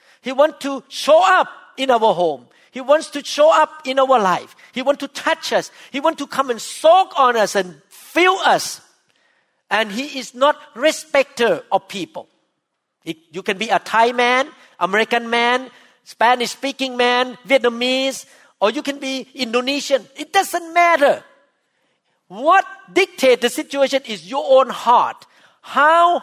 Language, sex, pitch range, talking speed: English, male, 190-285 Hz, 155 wpm